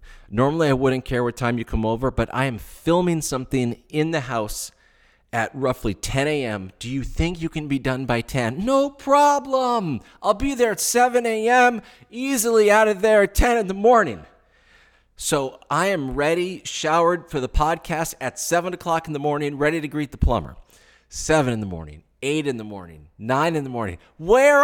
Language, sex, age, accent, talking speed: English, male, 40-59, American, 190 wpm